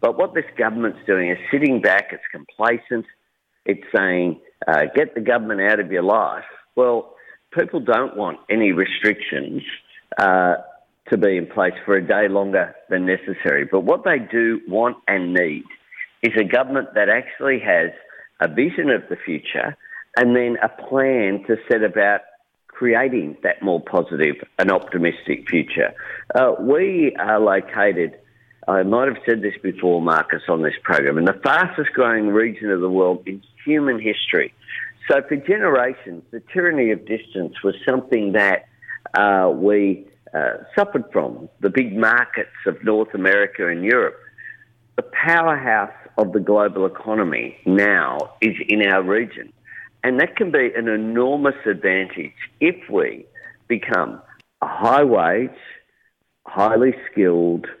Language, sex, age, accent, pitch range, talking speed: English, male, 50-69, Australian, 95-135 Hz, 145 wpm